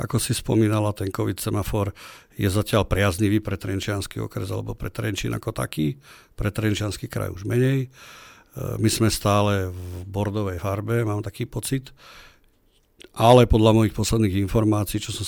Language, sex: Slovak, male